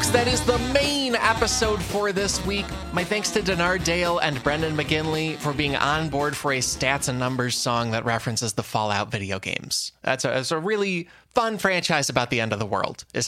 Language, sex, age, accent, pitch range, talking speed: English, male, 20-39, American, 125-175 Hz, 205 wpm